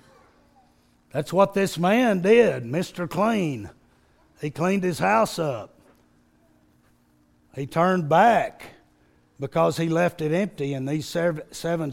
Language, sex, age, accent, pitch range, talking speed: English, male, 60-79, American, 140-195 Hz, 115 wpm